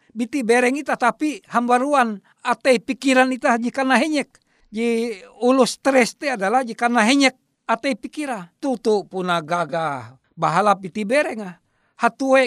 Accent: native